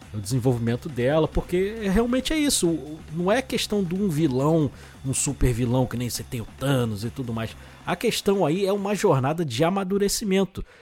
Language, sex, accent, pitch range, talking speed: Portuguese, male, Brazilian, 135-210 Hz, 175 wpm